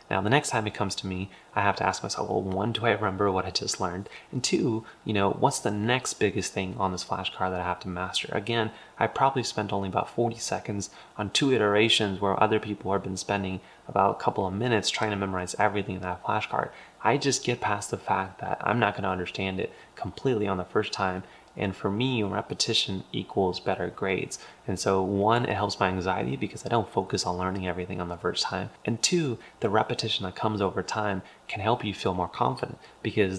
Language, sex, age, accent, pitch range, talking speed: English, male, 30-49, American, 95-110 Hz, 225 wpm